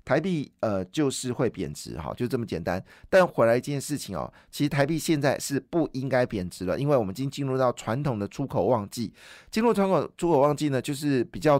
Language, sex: Chinese, male